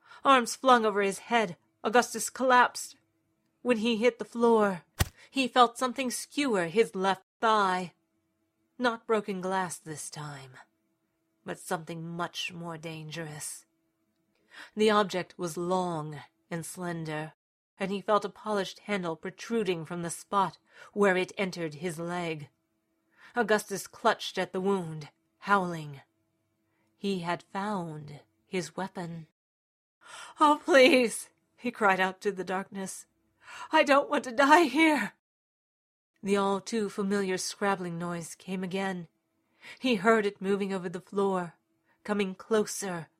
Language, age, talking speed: English, 40-59, 125 wpm